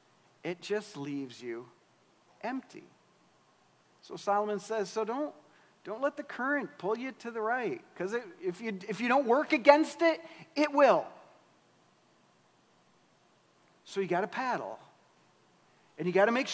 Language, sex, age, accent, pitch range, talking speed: English, male, 40-59, American, 165-225 Hz, 145 wpm